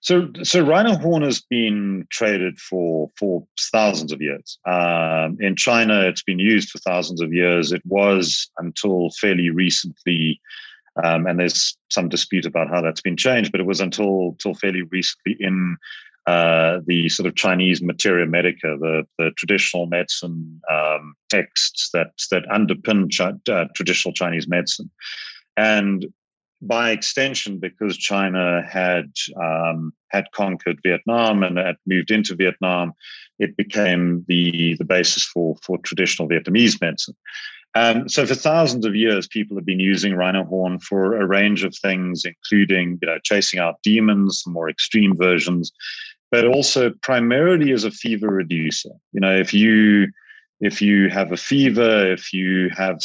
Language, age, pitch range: English, 40-59, 85-105 Hz